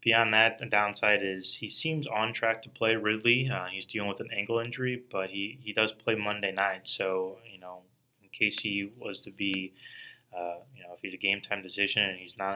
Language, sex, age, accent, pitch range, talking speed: English, male, 20-39, American, 95-115 Hz, 220 wpm